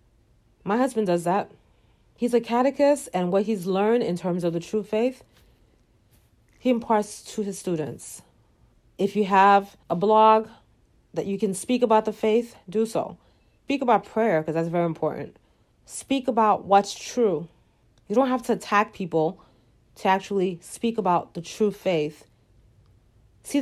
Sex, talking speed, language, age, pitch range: female, 155 wpm, English, 40-59, 175-230 Hz